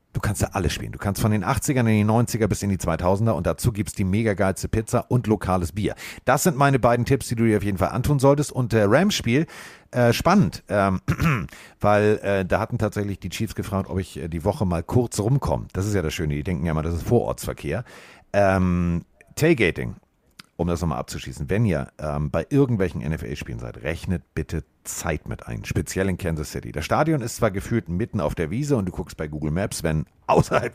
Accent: German